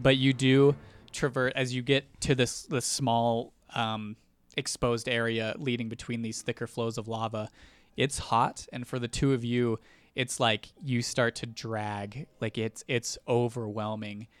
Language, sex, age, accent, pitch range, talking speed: English, male, 20-39, American, 110-125 Hz, 165 wpm